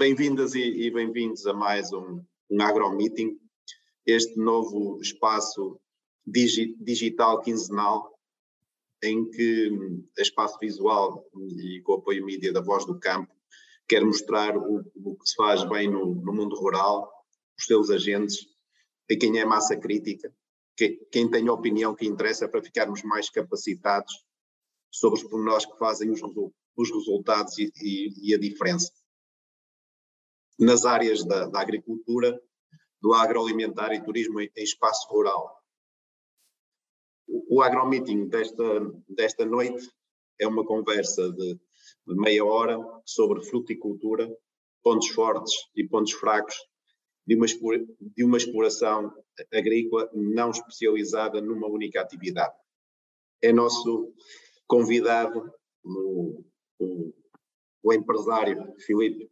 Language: Portuguese